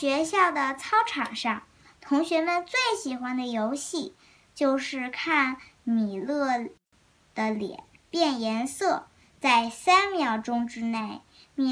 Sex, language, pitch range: male, Chinese, 240-335 Hz